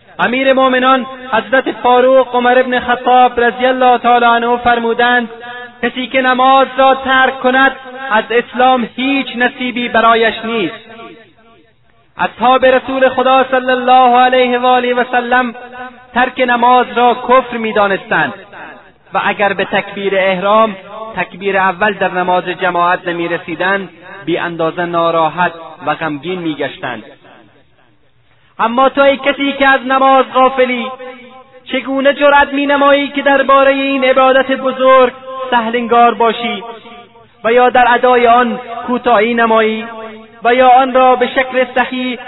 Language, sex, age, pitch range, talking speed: Persian, male, 30-49, 230-260 Hz, 130 wpm